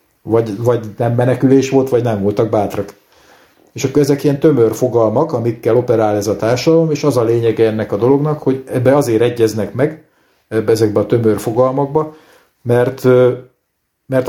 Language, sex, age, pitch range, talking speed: Hungarian, male, 50-69, 110-135 Hz, 165 wpm